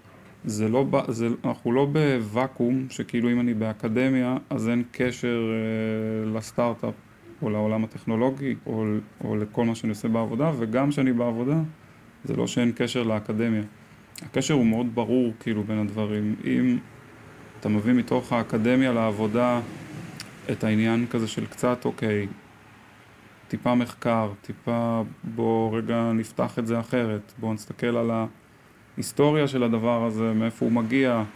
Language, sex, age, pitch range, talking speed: Hebrew, male, 20-39, 110-125 Hz, 140 wpm